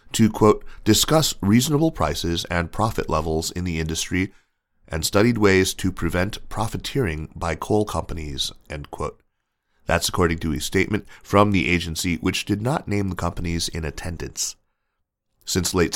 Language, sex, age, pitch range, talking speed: English, male, 30-49, 80-100 Hz, 150 wpm